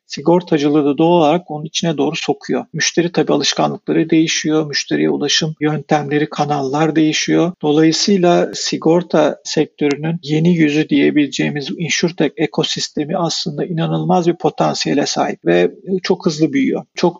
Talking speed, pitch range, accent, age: 120 wpm, 150-170 Hz, native, 50-69